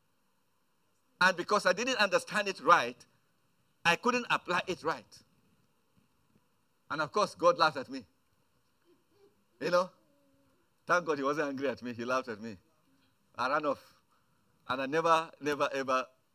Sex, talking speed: male, 145 wpm